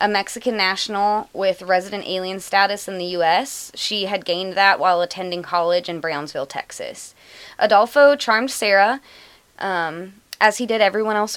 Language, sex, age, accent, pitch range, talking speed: English, female, 20-39, American, 185-230 Hz, 155 wpm